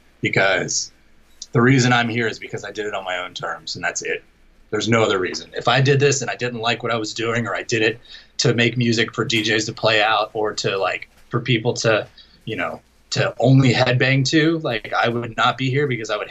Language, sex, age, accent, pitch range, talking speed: English, male, 20-39, American, 115-130 Hz, 245 wpm